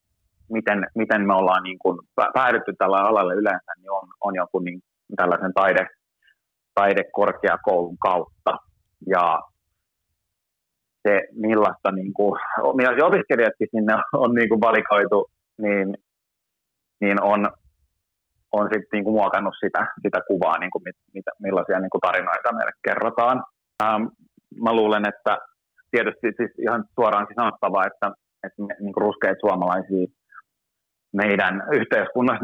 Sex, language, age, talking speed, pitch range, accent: male, Finnish, 30-49, 125 wpm, 90-110 Hz, native